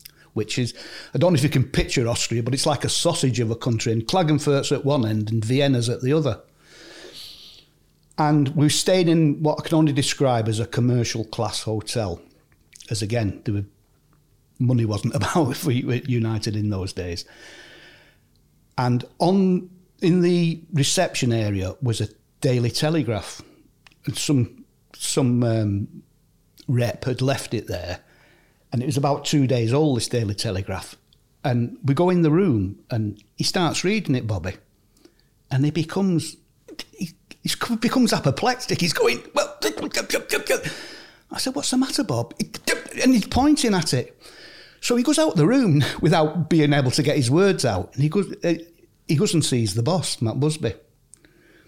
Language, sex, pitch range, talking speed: English, male, 120-175 Hz, 165 wpm